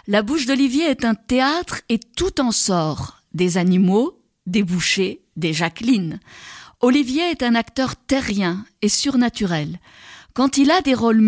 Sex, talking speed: female, 150 wpm